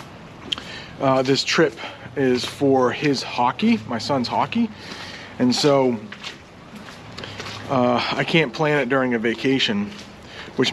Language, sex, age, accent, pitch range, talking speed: English, male, 30-49, American, 120-155 Hz, 115 wpm